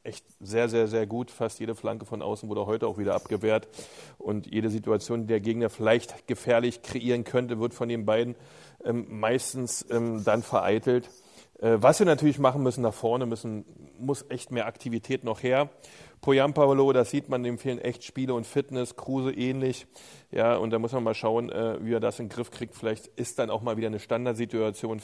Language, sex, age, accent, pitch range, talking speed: German, male, 30-49, German, 110-120 Hz, 205 wpm